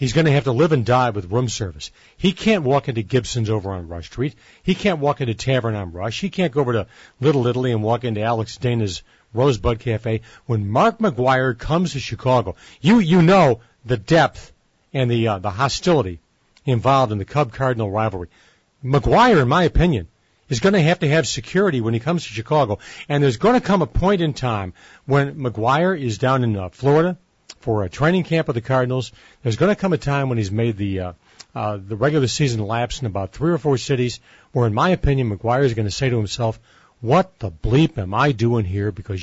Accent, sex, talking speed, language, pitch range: American, male, 215 wpm, English, 110-150 Hz